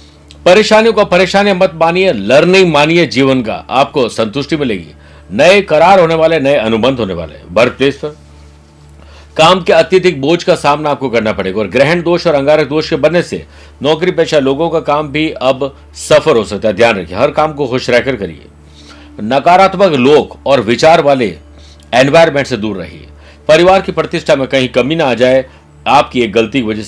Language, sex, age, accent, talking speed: Hindi, male, 50-69, native, 185 wpm